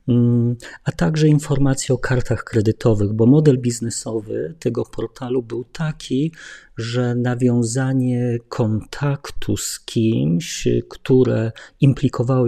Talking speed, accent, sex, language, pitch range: 95 wpm, native, male, Polish, 120-140 Hz